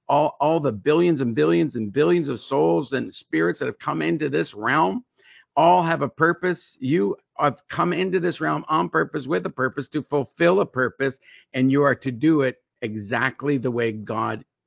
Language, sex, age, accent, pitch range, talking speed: English, male, 50-69, American, 115-145 Hz, 190 wpm